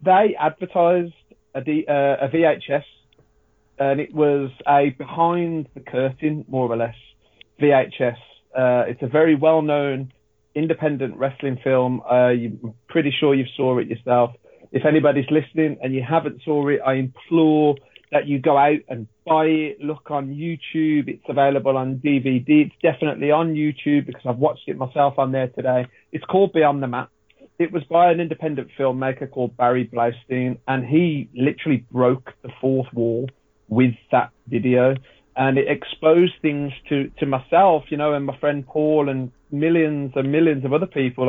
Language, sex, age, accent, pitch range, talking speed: English, male, 30-49, British, 125-150 Hz, 160 wpm